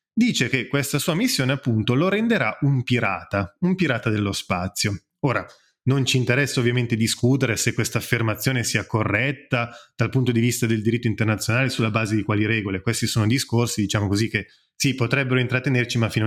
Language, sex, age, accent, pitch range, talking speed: Italian, male, 20-39, native, 115-145 Hz, 175 wpm